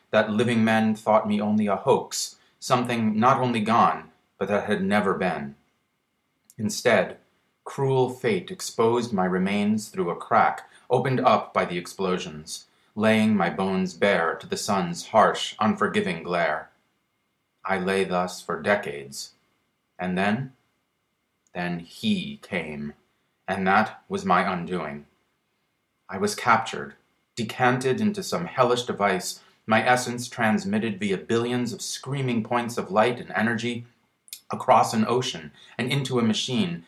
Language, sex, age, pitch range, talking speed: English, male, 30-49, 95-125 Hz, 135 wpm